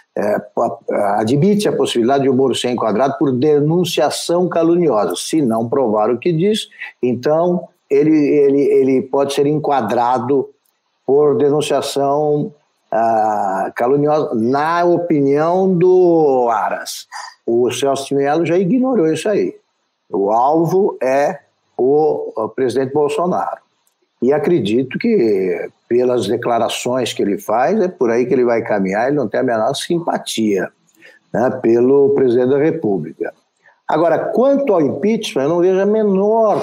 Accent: Brazilian